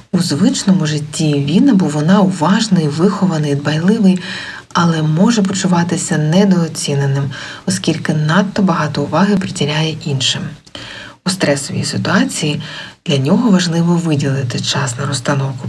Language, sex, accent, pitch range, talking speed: Ukrainian, female, native, 140-190 Hz, 110 wpm